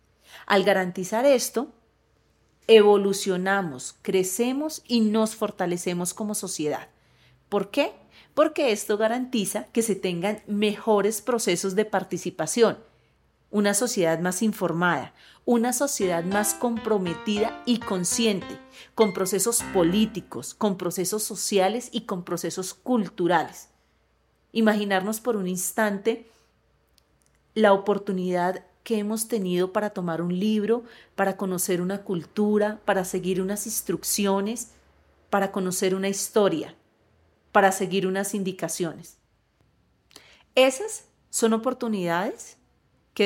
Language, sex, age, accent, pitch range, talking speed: Spanish, female, 40-59, Colombian, 185-220 Hz, 105 wpm